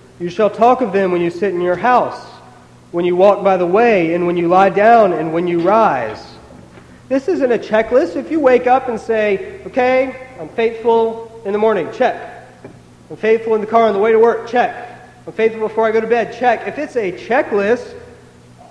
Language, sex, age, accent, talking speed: English, male, 40-59, American, 210 wpm